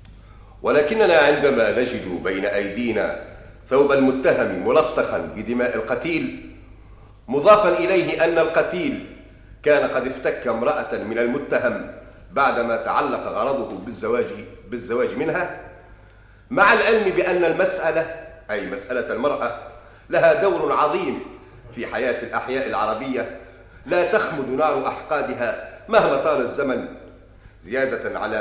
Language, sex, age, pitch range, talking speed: Arabic, male, 50-69, 100-165 Hz, 105 wpm